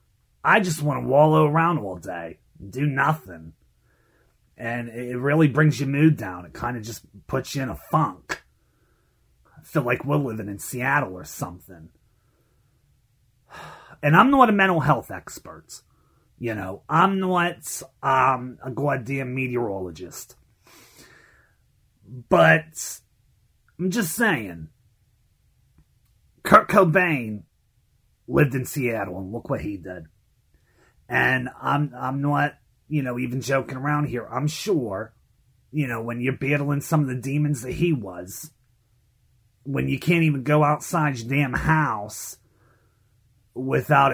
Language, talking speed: English, 135 wpm